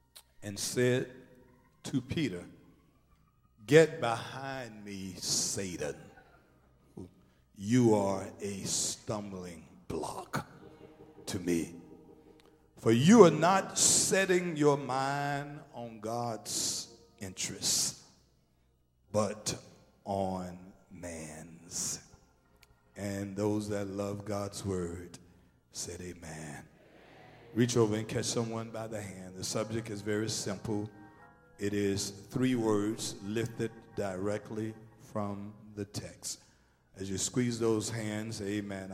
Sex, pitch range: male, 95-115 Hz